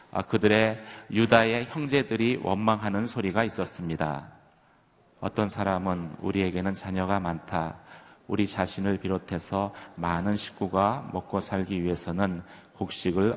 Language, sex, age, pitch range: Korean, male, 30-49, 95-120 Hz